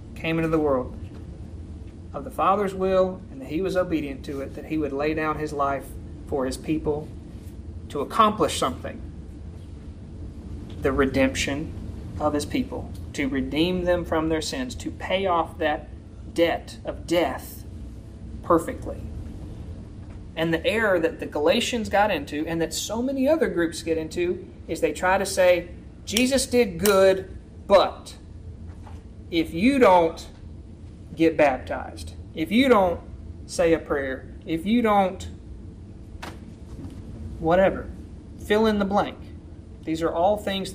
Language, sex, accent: English, male, American